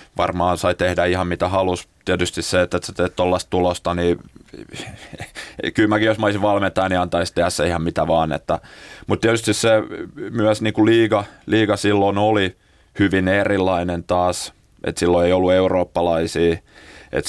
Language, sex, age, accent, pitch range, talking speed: Finnish, male, 30-49, native, 85-95 Hz, 155 wpm